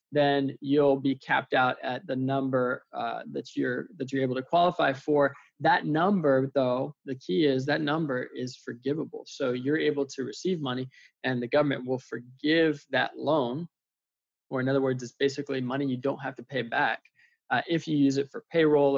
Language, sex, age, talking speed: English, male, 20-39, 185 wpm